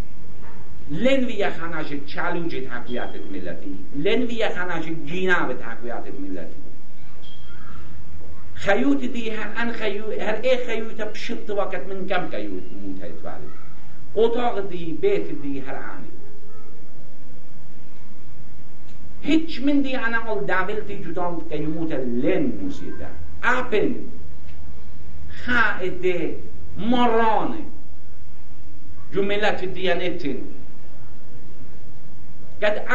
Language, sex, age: English, male, 60-79